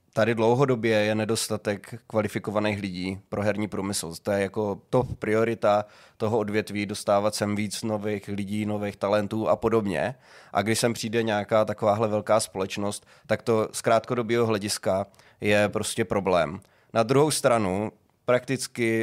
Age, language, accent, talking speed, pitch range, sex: 20-39, Czech, native, 140 wpm, 105-115 Hz, male